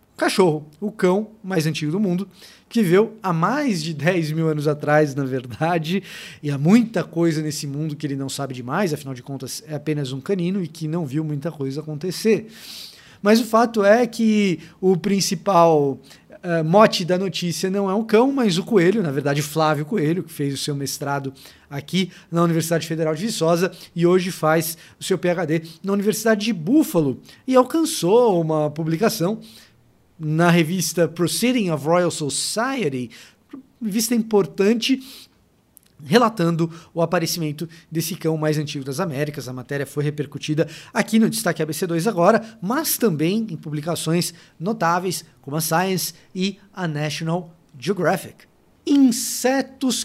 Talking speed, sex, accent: 155 wpm, male, Brazilian